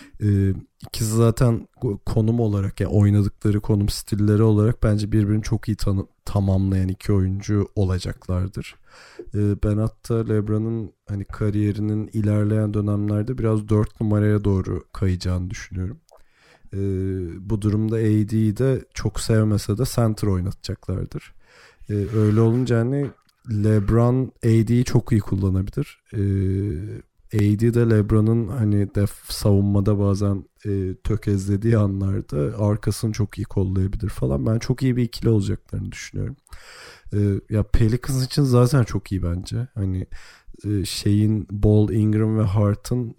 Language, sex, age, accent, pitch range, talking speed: Turkish, male, 40-59, native, 100-115 Hz, 120 wpm